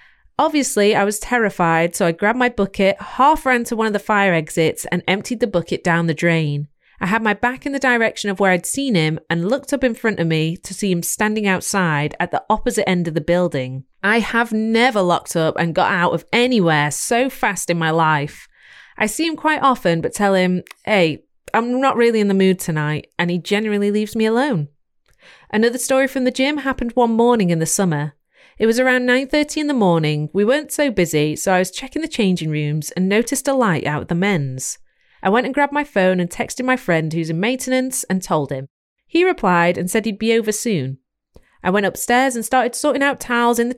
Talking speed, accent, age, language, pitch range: 225 wpm, British, 30-49, English, 170-245 Hz